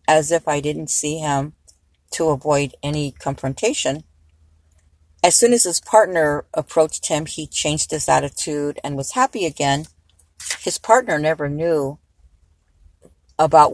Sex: female